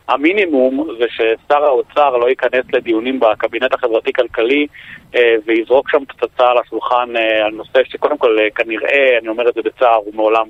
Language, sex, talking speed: Hebrew, male, 150 wpm